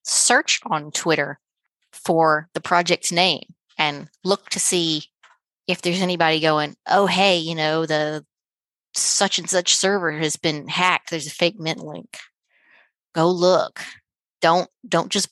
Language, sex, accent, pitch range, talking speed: English, female, American, 155-185 Hz, 145 wpm